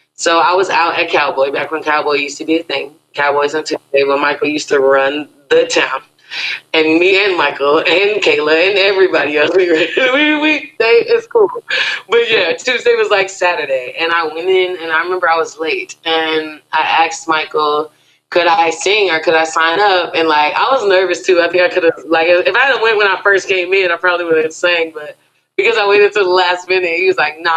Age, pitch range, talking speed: 20-39, 160-215 Hz, 230 wpm